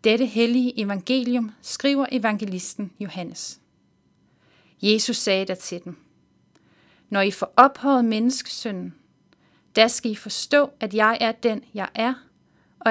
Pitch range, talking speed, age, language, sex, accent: 190-235 Hz, 125 wpm, 30-49, Danish, female, native